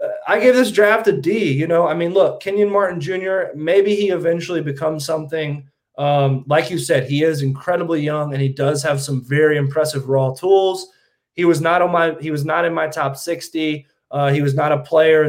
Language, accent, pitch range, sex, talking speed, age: English, American, 140-175 Hz, male, 210 wpm, 20-39